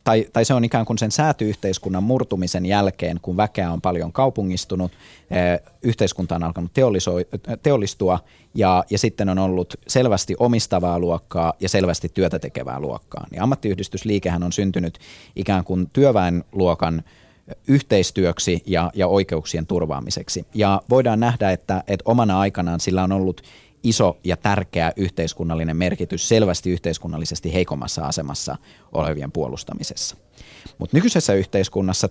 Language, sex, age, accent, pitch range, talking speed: Finnish, male, 30-49, native, 90-110 Hz, 125 wpm